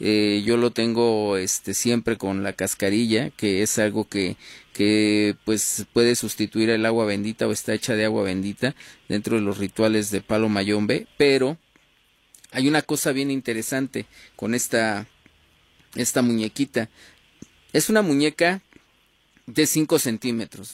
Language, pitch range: Spanish, 105-135 Hz